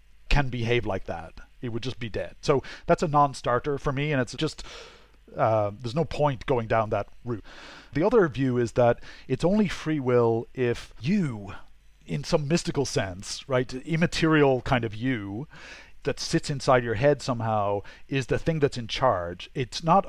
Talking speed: 180 wpm